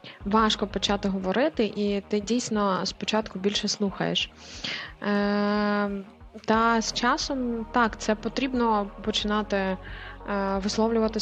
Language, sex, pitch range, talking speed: Ukrainian, female, 200-225 Hz, 90 wpm